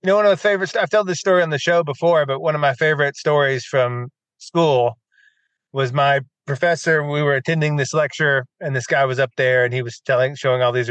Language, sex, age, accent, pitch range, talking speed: English, male, 30-49, American, 135-195 Hz, 235 wpm